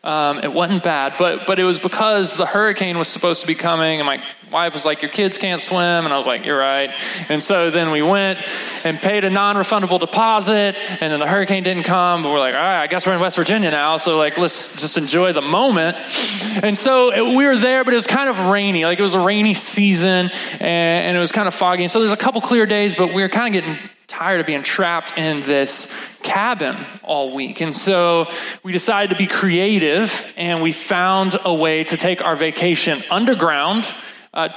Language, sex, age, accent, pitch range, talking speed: English, male, 20-39, American, 160-195 Hz, 225 wpm